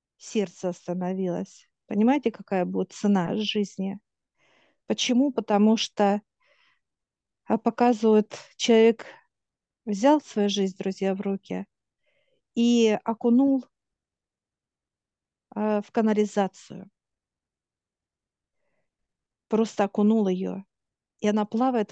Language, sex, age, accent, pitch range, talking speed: Russian, female, 50-69, native, 200-230 Hz, 75 wpm